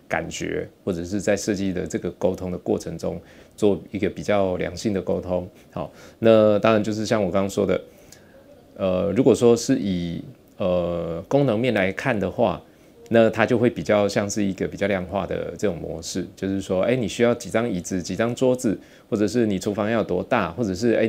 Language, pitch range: Chinese, 95-115 Hz